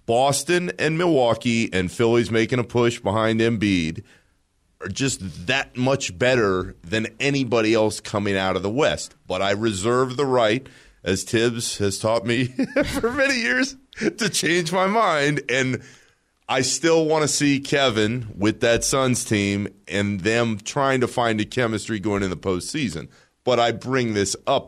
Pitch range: 100-135 Hz